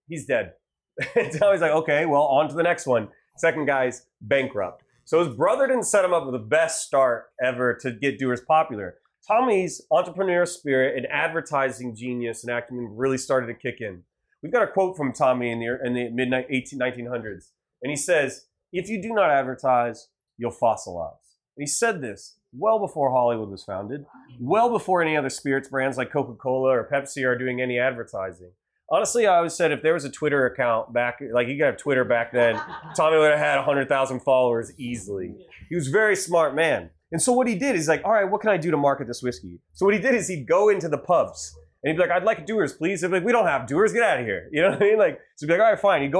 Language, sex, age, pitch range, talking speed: English, male, 30-49, 125-185 Hz, 230 wpm